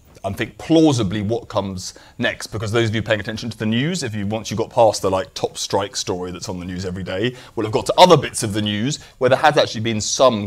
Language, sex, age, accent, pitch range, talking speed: English, male, 30-49, British, 95-120 Hz, 270 wpm